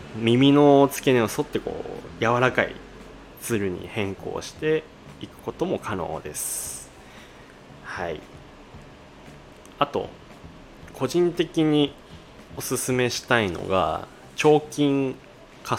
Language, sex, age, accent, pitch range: Japanese, male, 20-39, native, 100-150 Hz